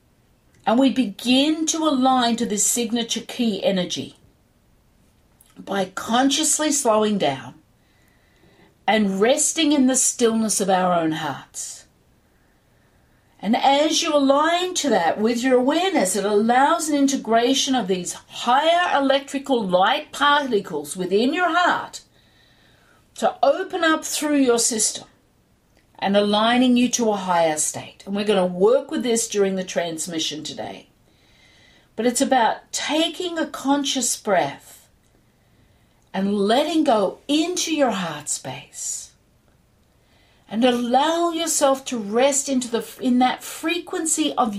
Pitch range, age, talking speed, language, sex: 200-290 Hz, 50-69, 125 wpm, English, female